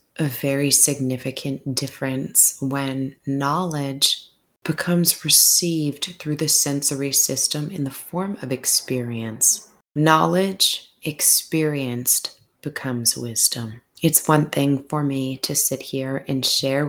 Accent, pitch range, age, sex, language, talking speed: American, 130-145 Hz, 20-39, female, English, 110 wpm